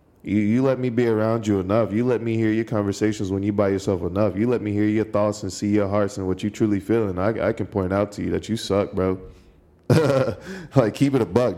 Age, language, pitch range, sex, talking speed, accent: 20-39, English, 95-120 Hz, male, 265 wpm, American